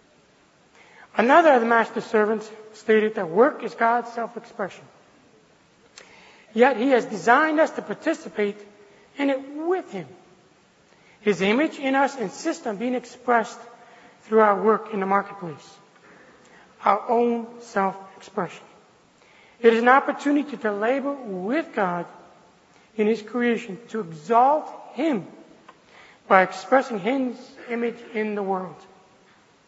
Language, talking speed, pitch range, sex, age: English, 120 wpm, 205-250 Hz, male, 60-79